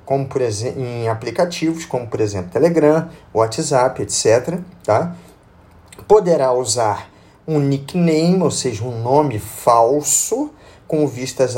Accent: Brazilian